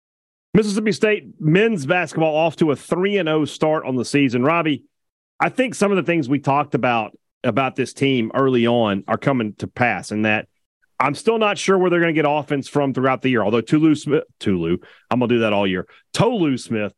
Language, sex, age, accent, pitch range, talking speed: English, male, 40-59, American, 115-155 Hz, 215 wpm